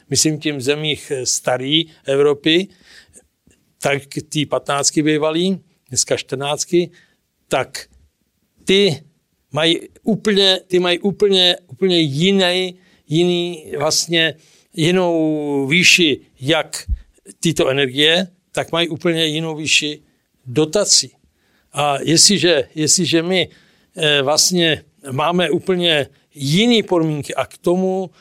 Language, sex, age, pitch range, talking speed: Czech, male, 60-79, 150-180 Hz, 100 wpm